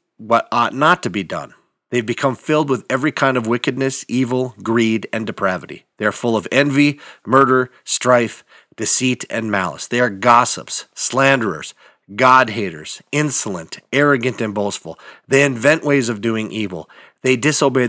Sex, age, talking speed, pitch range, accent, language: male, 40-59, 150 wpm, 115-135 Hz, American, English